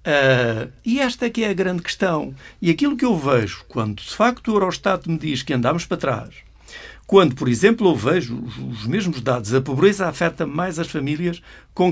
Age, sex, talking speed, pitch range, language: 60-79, male, 200 wpm, 125-180 Hz, Portuguese